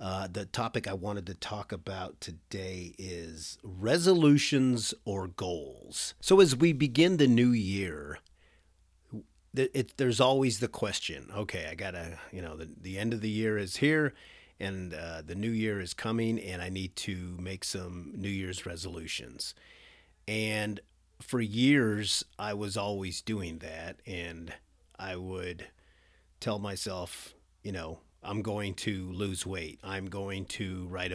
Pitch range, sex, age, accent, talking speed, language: 90-110 Hz, male, 40-59, American, 150 wpm, English